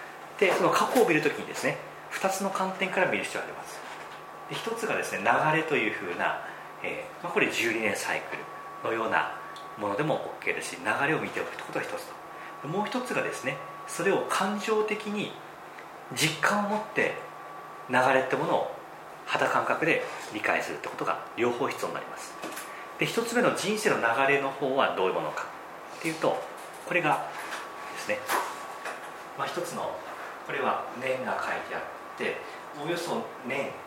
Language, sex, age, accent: Japanese, male, 40-59, native